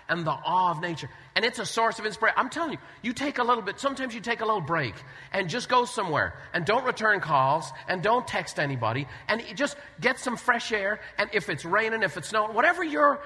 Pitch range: 190-275 Hz